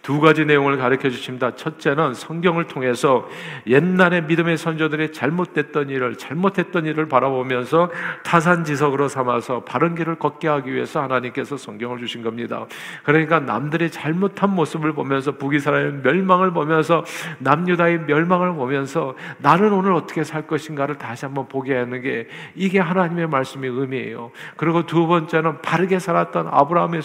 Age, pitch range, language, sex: 50-69, 135-175 Hz, Korean, male